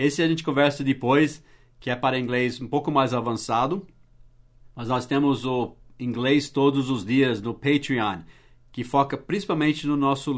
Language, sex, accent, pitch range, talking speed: English, male, Brazilian, 120-150 Hz, 160 wpm